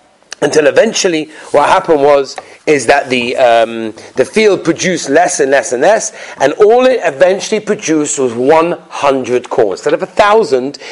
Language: English